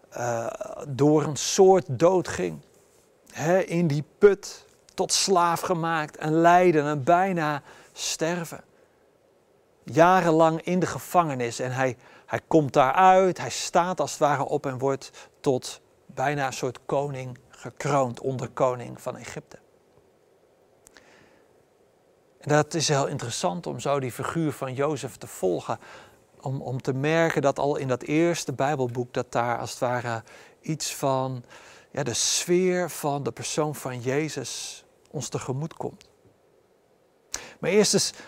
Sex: male